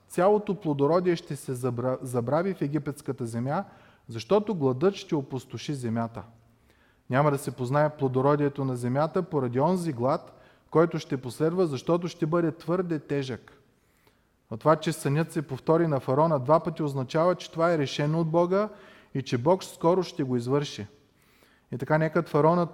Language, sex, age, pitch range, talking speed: Bulgarian, male, 30-49, 130-170 Hz, 155 wpm